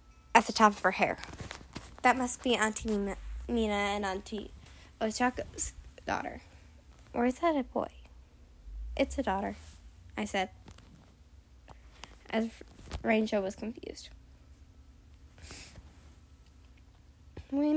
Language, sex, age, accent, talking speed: English, female, 10-29, American, 105 wpm